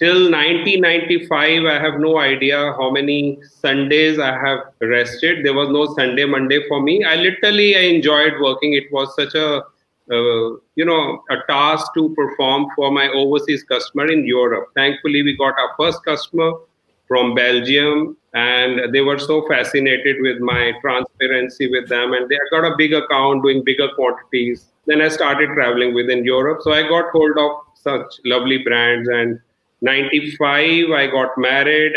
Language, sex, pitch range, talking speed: Punjabi, male, 125-155 Hz, 165 wpm